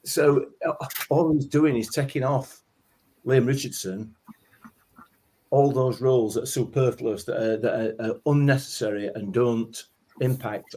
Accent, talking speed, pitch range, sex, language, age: British, 130 wpm, 110-130 Hz, male, English, 40-59